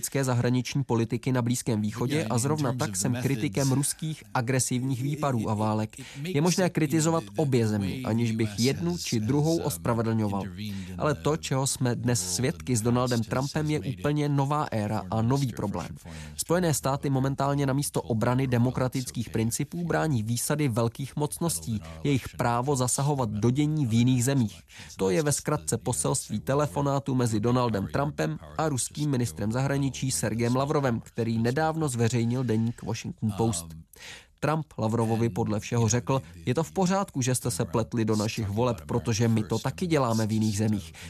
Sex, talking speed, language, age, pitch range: male, 155 wpm, Czech, 20-39, 115-145 Hz